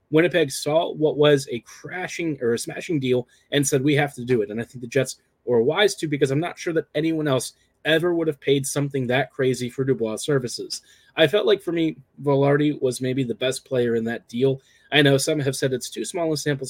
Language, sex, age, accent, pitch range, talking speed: English, male, 30-49, American, 130-155 Hz, 235 wpm